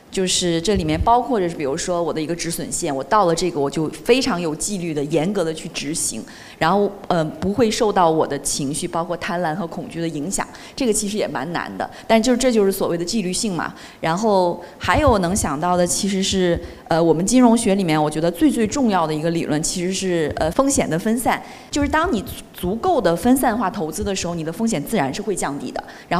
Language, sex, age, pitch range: Chinese, female, 20-39, 165-220 Hz